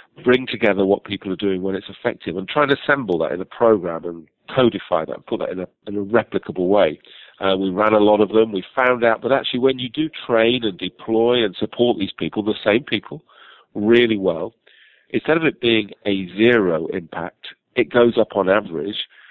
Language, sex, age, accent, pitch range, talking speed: English, male, 50-69, British, 95-115 Hz, 210 wpm